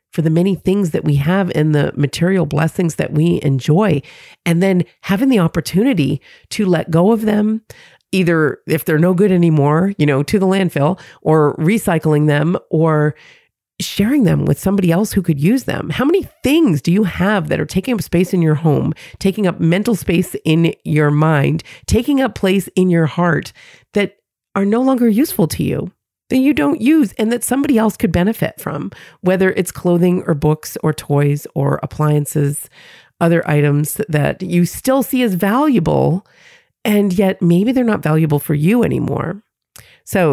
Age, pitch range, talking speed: 40-59, 150-205 Hz, 180 wpm